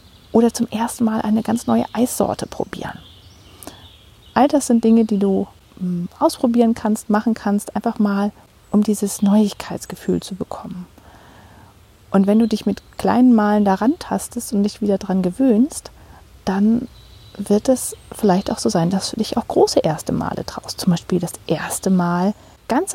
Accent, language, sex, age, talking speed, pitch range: German, German, female, 40-59, 160 wpm, 195-240 Hz